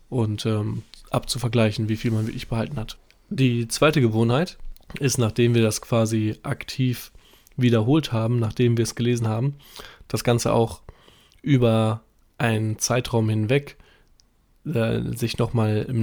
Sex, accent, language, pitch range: male, German, German, 110-130 Hz